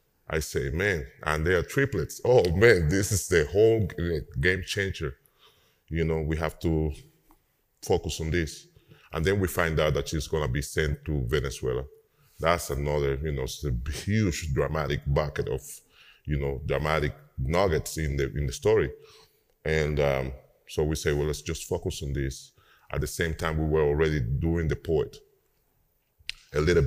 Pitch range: 70-80 Hz